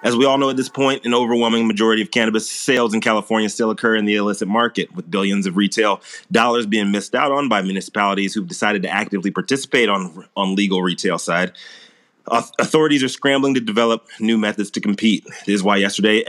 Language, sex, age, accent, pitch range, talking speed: English, male, 30-49, American, 100-120 Hz, 205 wpm